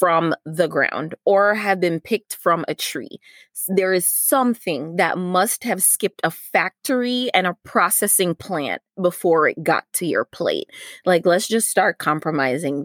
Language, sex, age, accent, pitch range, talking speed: English, female, 20-39, American, 170-225 Hz, 160 wpm